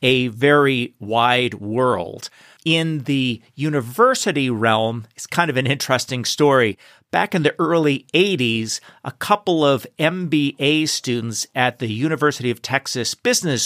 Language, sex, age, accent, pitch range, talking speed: English, male, 50-69, American, 125-155 Hz, 130 wpm